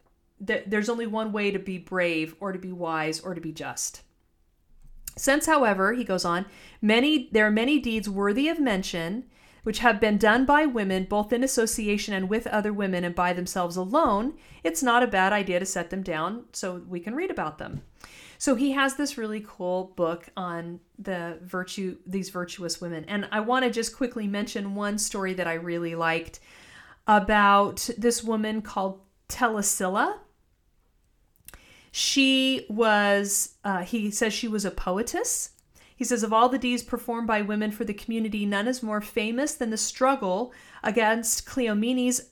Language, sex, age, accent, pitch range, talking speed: English, female, 40-59, American, 185-240 Hz, 175 wpm